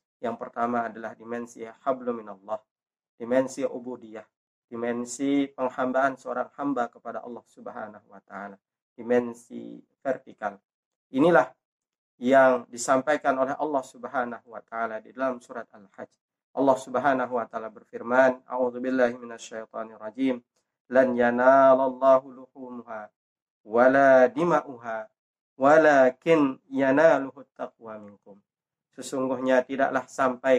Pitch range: 115-130 Hz